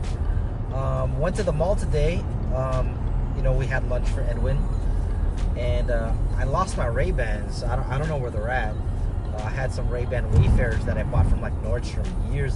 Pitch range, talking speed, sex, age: 95-120 Hz, 190 wpm, male, 30-49